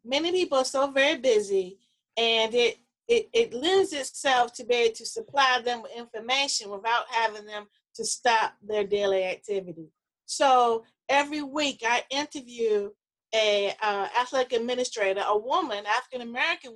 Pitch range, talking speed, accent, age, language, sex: 220-280 Hz, 145 wpm, American, 30-49, English, female